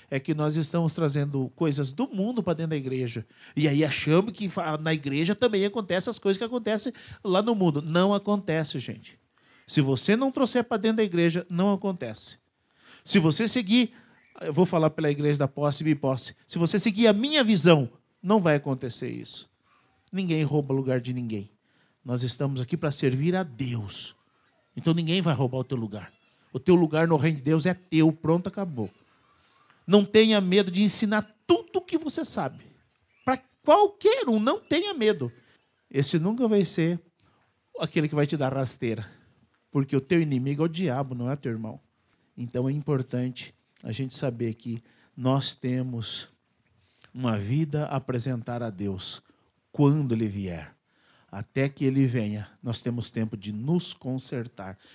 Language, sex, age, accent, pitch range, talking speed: Portuguese, male, 50-69, Brazilian, 125-185 Hz, 175 wpm